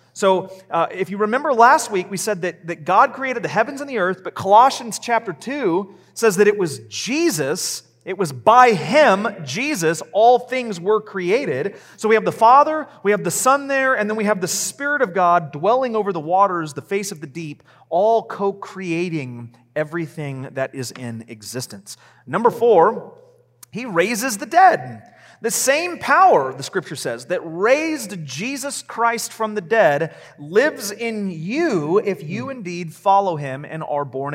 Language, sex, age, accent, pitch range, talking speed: English, male, 30-49, American, 165-230 Hz, 175 wpm